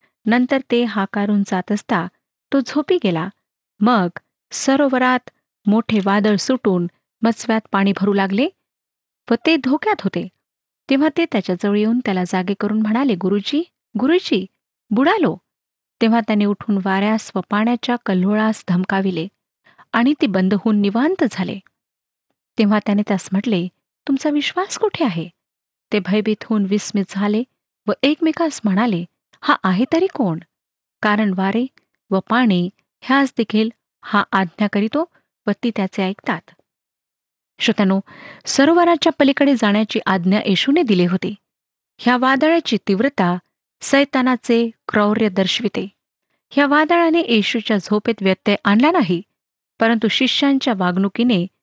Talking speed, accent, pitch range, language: 120 wpm, native, 195-265 Hz, Marathi